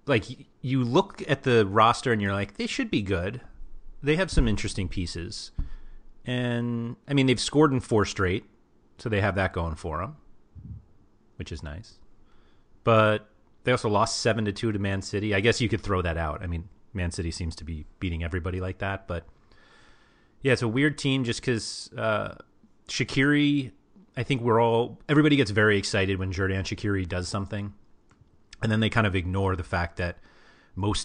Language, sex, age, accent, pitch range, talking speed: English, male, 30-49, American, 95-115 Hz, 185 wpm